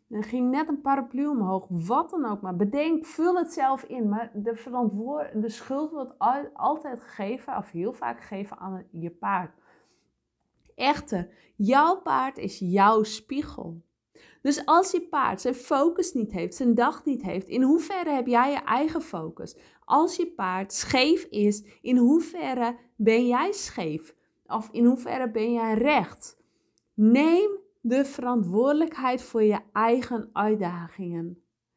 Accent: Dutch